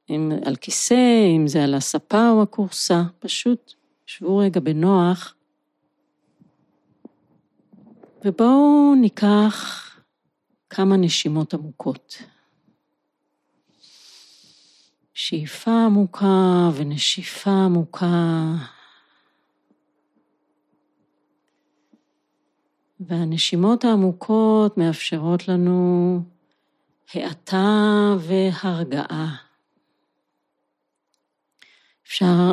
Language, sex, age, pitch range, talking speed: Hebrew, female, 40-59, 170-205 Hz, 55 wpm